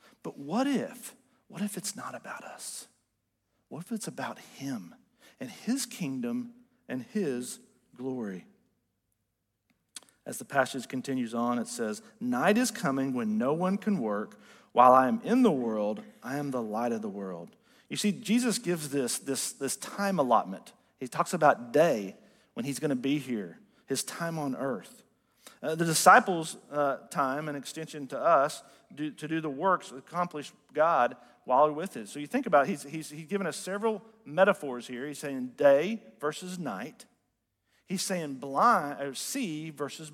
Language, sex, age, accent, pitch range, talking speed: English, male, 40-59, American, 140-220 Hz, 170 wpm